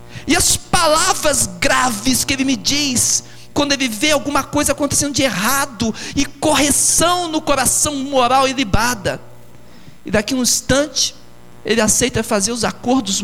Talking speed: 150 wpm